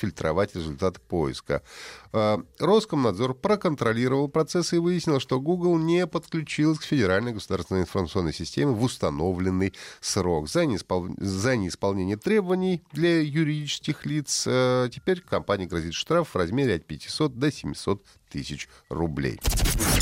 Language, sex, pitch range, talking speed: Russian, male, 90-140 Hz, 110 wpm